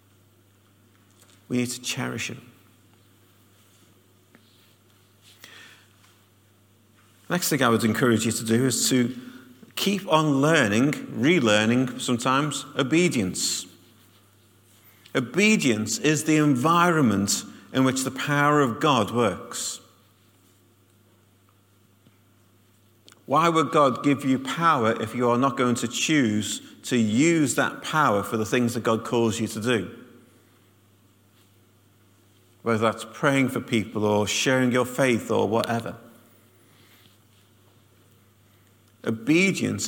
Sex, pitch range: male, 100-130 Hz